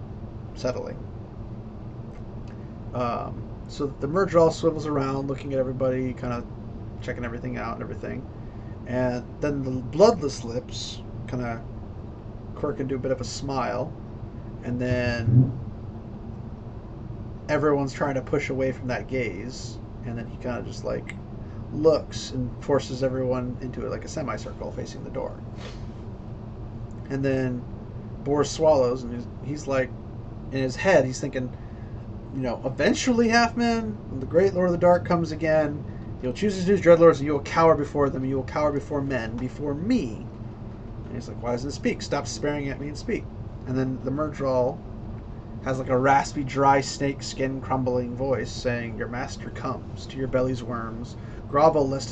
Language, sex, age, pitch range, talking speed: English, male, 30-49, 110-135 Hz, 160 wpm